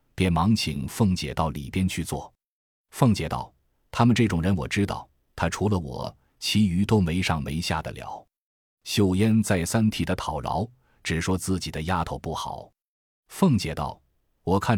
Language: Chinese